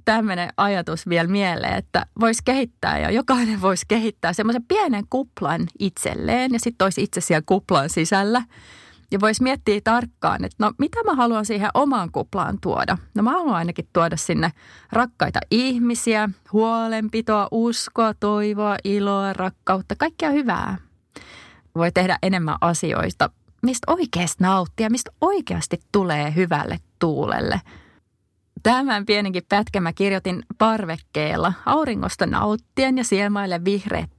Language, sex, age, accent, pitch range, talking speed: Finnish, female, 30-49, native, 180-230 Hz, 125 wpm